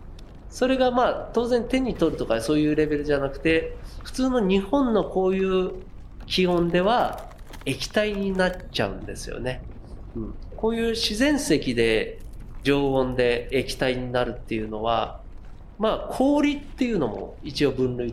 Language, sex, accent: Japanese, male, native